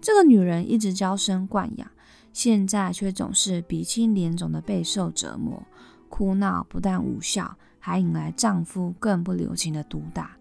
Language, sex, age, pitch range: Chinese, female, 20-39, 175-230 Hz